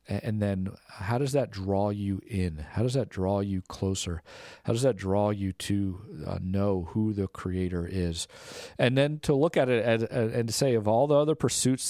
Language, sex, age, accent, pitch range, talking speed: English, male, 40-59, American, 95-115 Hz, 195 wpm